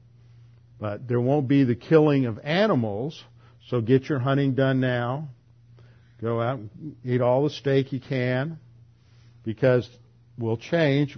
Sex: male